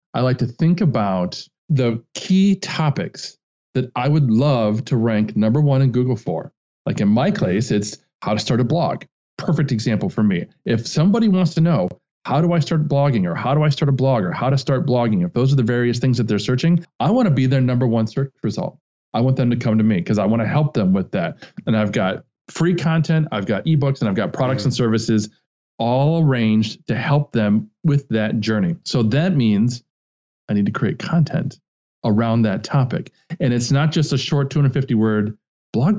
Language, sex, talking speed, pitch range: English, male, 215 wpm, 115-155 Hz